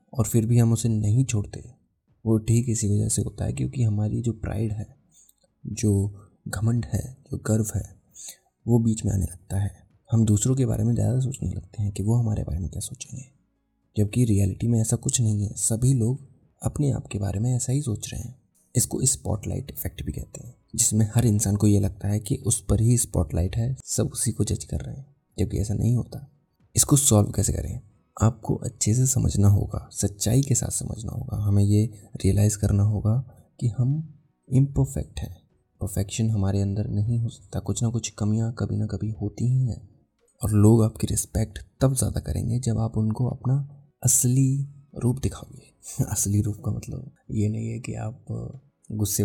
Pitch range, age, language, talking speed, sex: 100-120 Hz, 20-39, Hindi, 195 wpm, male